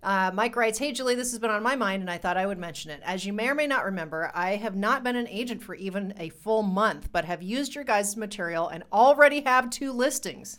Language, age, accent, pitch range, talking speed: English, 40-59, American, 180-240 Hz, 265 wpm